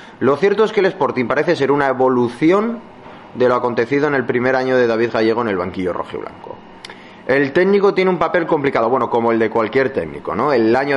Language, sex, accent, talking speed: Spanish, male, Spanish, 225 wpm